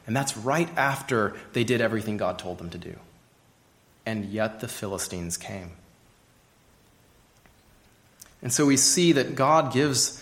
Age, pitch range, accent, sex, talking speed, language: 30-49, 105-135 Hz, American, male, 140 wpm, English